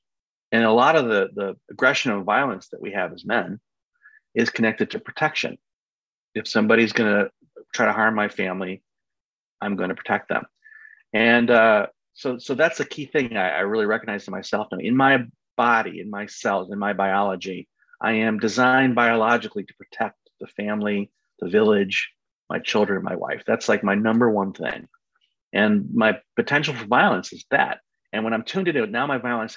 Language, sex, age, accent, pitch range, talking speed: Finnish, male, 40-59, American, 105-180 Hz, 185 wpm